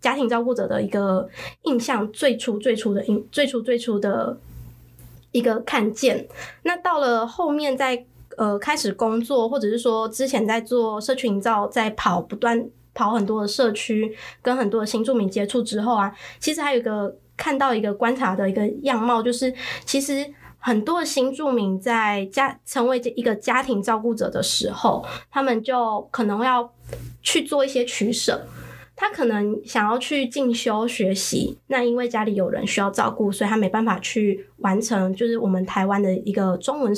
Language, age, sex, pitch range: Chinese, 20-39, female, 210-255 Hz